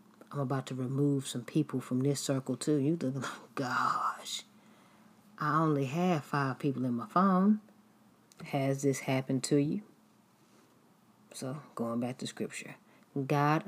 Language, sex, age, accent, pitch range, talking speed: English, female, 40-59, American, 130-155 Hz, 150 wpm